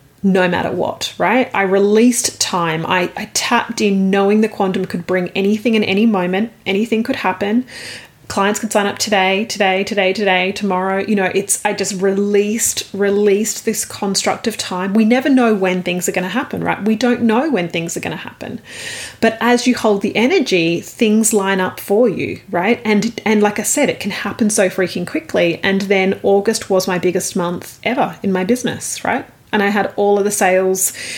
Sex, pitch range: female, 185-220 Hz